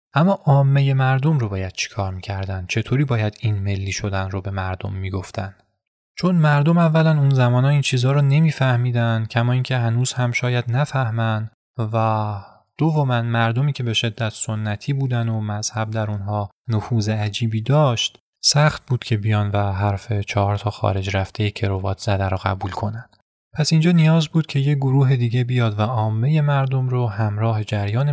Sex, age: male, 20-39